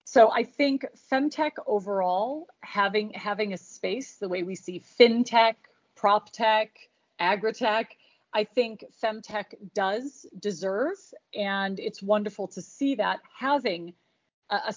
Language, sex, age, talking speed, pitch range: English, female, 40-59, 125 wpm, 195-225 Hz